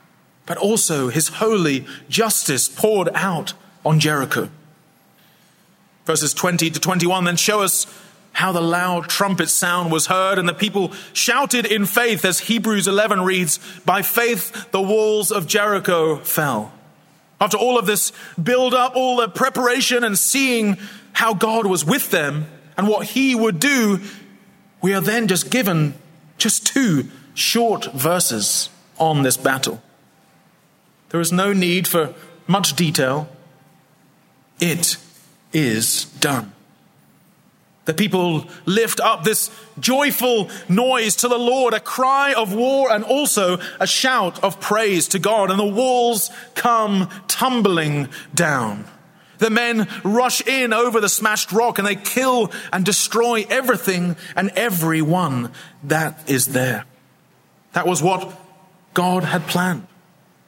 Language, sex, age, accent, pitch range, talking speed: English, male, 30-49, British, 170-225 Hz, 135 wpm